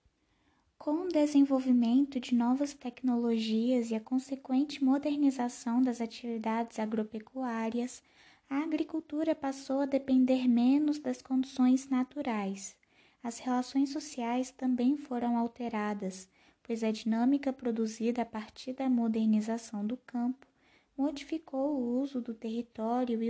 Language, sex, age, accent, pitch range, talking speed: Portuguese, female, 20-39, Brazilian, 225-260 Hz, 115 wpm